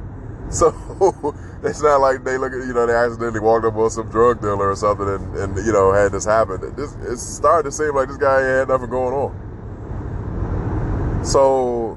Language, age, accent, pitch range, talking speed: English, 20-39, American, 95-120 Hz, 195 wpm